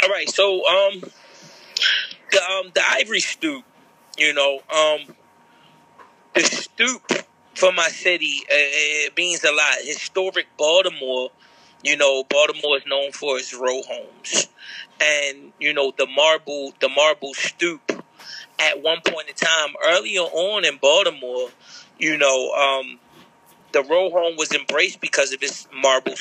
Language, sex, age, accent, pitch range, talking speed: English, male, 30-49, American, 145-195 Hz, 140 wpm